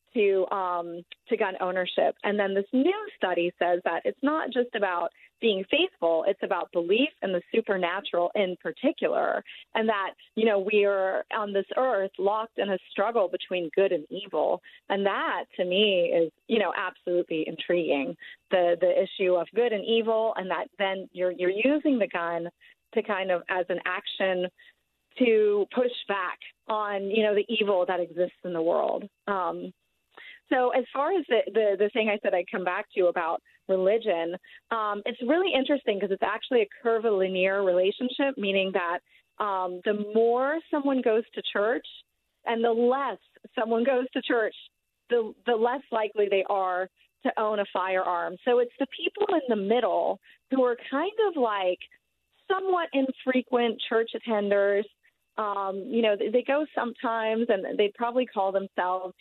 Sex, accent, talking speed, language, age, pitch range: female, American, 170 wpm, English, 30-49, 185-240 Hz